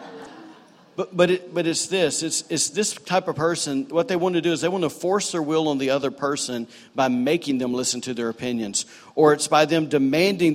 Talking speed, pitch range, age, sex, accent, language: 230 wpm, 125-165 Hz, 50-69, male, American, English